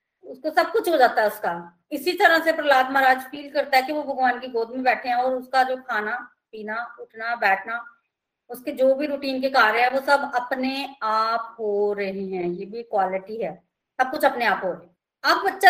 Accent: native